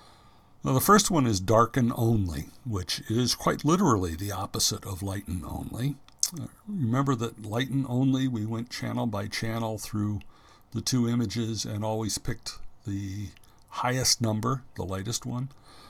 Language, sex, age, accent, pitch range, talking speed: English, male, 60-79, American, 100-125 Hz, 145 wpm